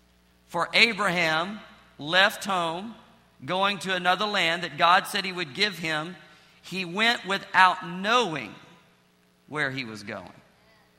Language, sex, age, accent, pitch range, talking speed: English, male, 40-59, American, 155-185 Hz, 125 wpm